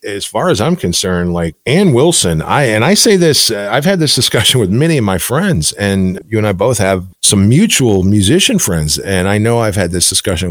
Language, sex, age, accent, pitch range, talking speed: English, male, 40-59, American, 105-155 Hz, 230 wpm